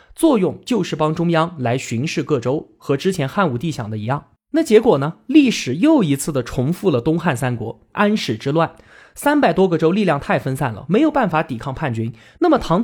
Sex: male